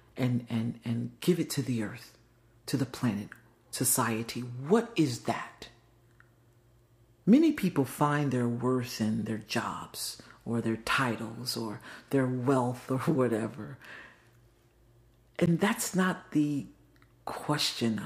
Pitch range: 115-145 Hz